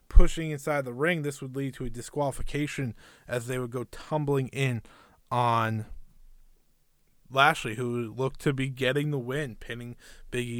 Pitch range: 120-150 Hz